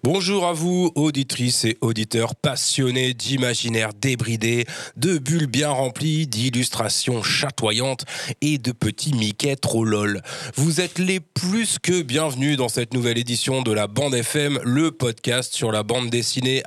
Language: French